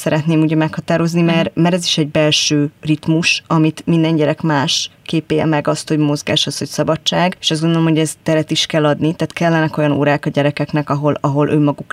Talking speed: 200 wpm